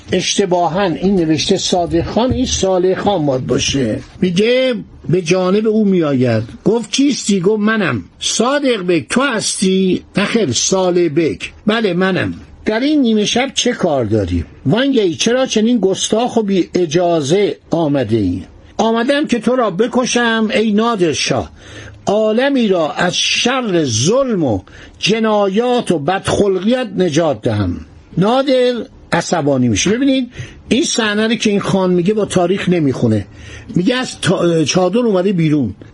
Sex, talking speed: male, 135 wpm